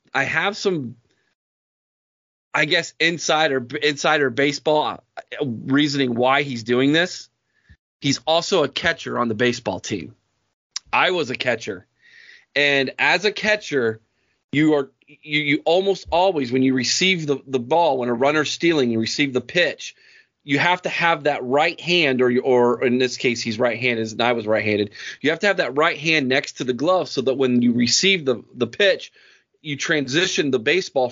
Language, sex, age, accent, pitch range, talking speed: English, male, 30-49, American, 125-160 Hz, 175 wpm